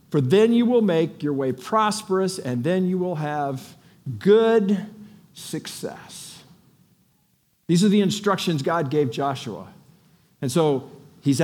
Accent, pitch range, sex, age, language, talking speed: American, 150-210 Hz, male, 50-69, English, 130 wpm